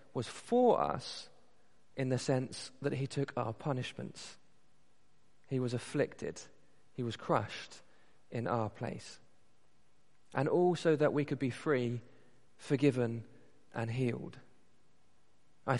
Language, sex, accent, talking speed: English, male, British, 120 wpm